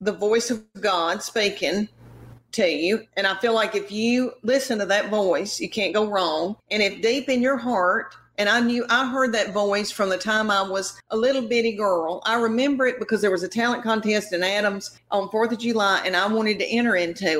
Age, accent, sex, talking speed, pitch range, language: 40-59, American, female, 220 wpm, 200-250 Hz, English